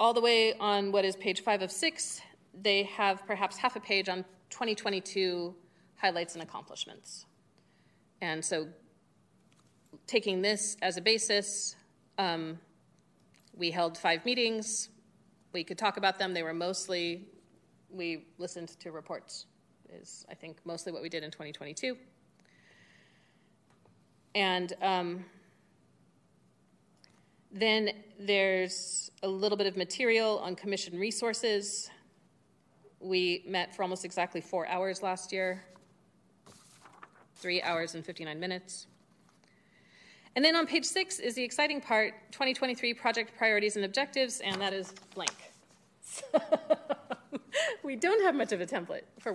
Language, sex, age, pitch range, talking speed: English, female, 30-49, 180-225 Hz, 130 wpm